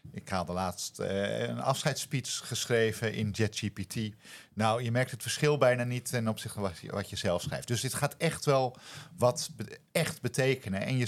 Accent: Dutch